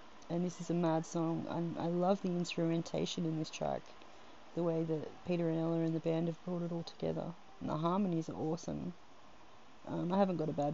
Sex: female